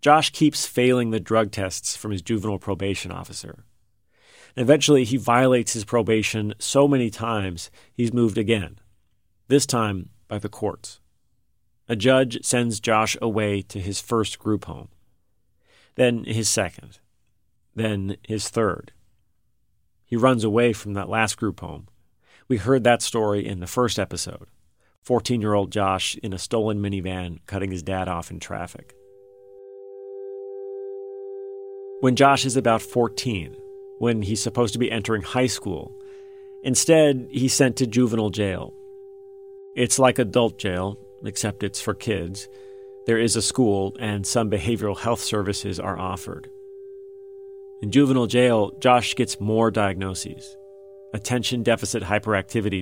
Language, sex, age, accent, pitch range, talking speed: English, male, 40-59, American, 100-130 Hz, 135 wpm